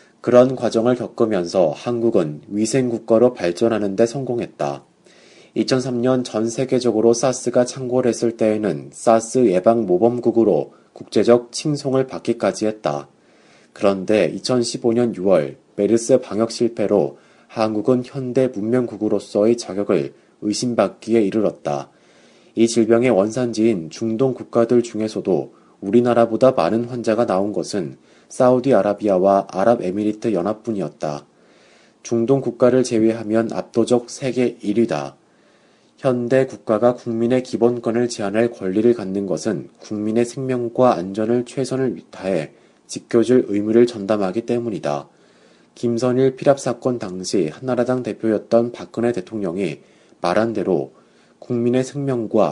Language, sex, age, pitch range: Korean, male, 30-49, 105-125 Hz